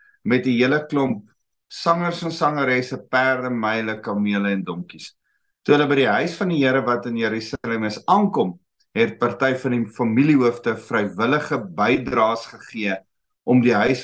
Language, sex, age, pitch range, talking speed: English, male, 50-69, 115-170 Hz, 160 wpm